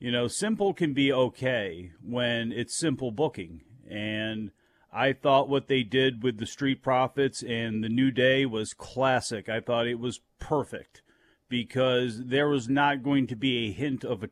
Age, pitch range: 40-59, 125-145 Hz